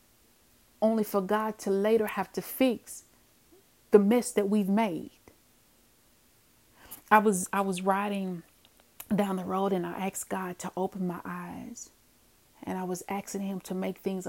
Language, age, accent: English, 30-49, American